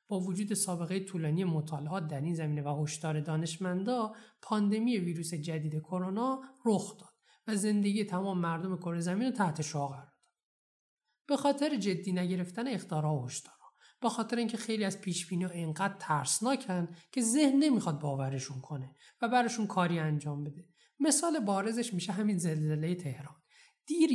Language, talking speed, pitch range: Persian, 145 wpm, 155-215 Hz